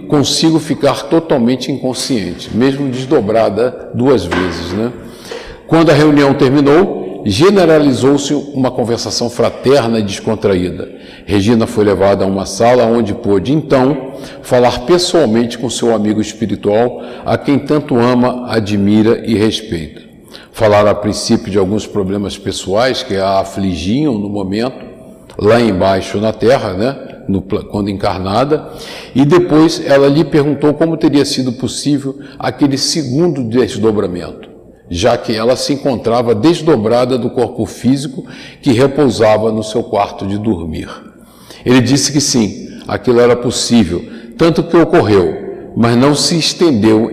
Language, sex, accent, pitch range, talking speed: Portuguese, male, Brazilian, 110-140 Hz, 130 wpm